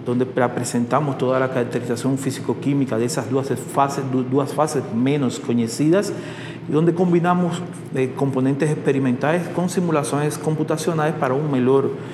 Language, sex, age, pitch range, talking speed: Portuguese, male, 40-59, 130-160 Hz, 125 wpm